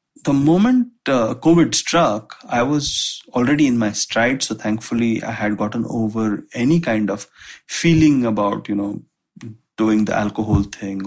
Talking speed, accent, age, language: 150 wpm, Indian, 30-49, English